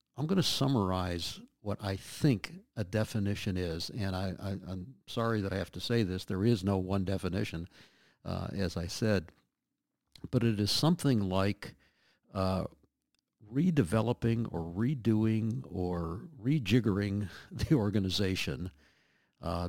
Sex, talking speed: male, 130 wpm